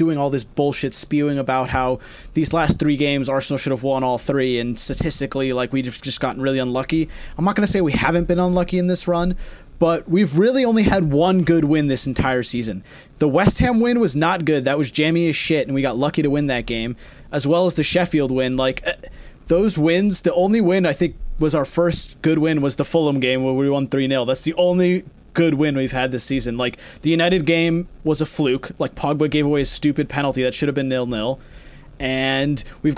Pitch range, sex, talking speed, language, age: 135-175 Hz, male, 230 wpm, English, 20-39